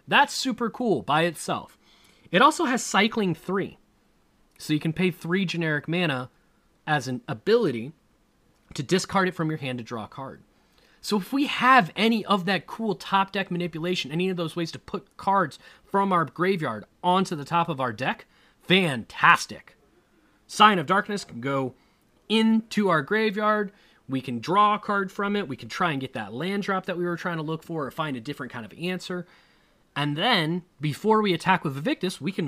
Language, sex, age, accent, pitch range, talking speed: English, male, 30-49, American, 135-195 Hz, 190 wpm